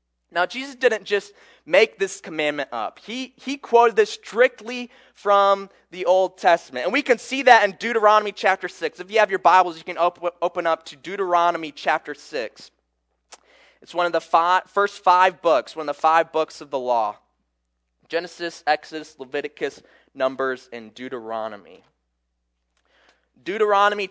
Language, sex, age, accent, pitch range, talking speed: English, male, 20-39, American, 155-225 Hz, 150 wpm